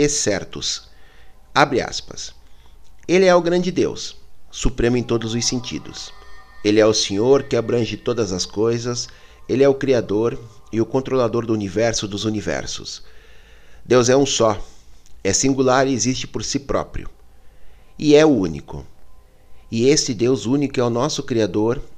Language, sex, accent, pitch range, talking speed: Portuguese, male, Brazilian, 95-135 Hz, 155 wpm